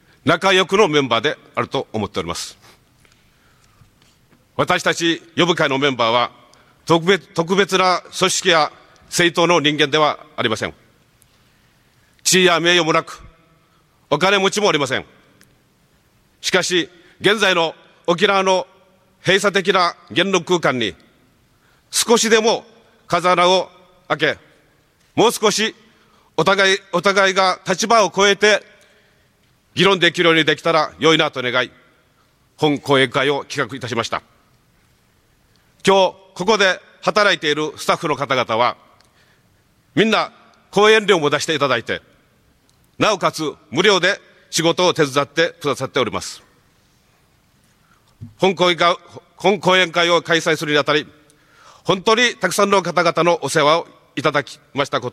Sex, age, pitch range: male, 40-59, 145-190 Hz